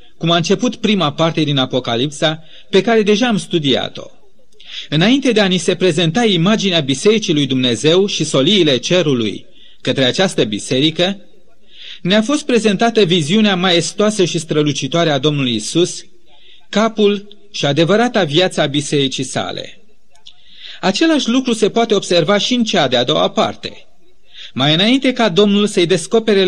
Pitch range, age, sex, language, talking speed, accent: 160-210 Hz, 30-49, male, Romanian, 140 wpm, native